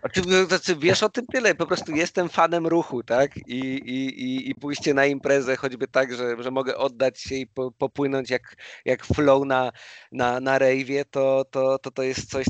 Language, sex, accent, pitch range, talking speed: Polish, male, native, 125-155 Hz, 200 wpm